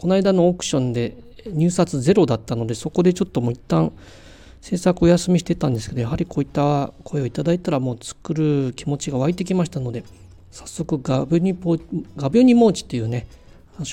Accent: native